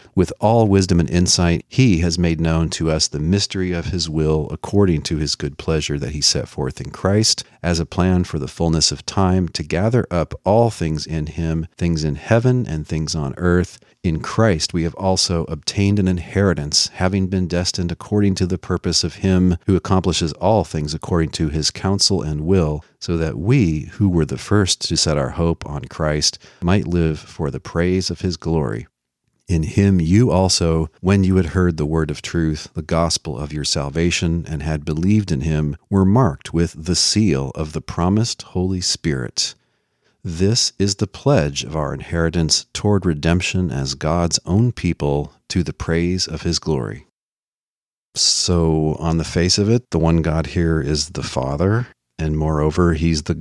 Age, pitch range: 40-59, 80-95 Hz